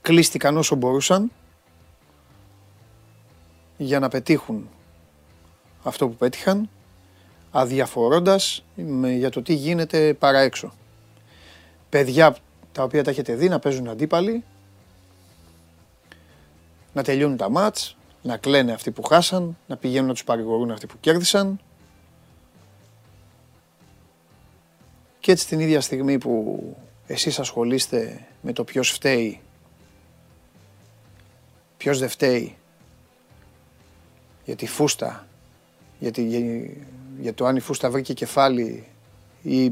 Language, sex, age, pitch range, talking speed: Greek, male, 30-49, 95-135 Hz, 100 wpm